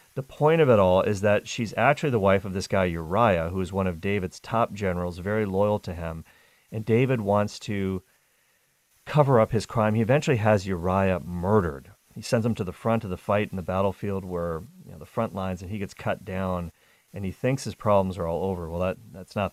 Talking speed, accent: 220 wpm, American